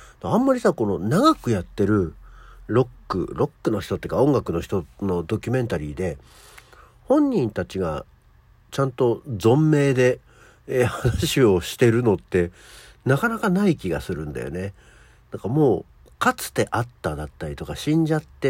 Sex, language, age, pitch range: male, Japanese, 50-69, 100-145 Hz